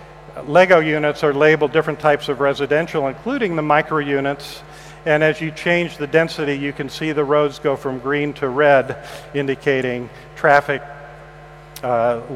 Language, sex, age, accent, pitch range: Chinese, male, 50-69, American, 140-160 Hz